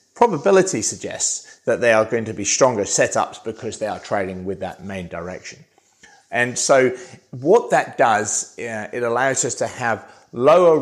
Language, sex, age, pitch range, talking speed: English, male, 30-49, 110-145 Hz, 160 wpm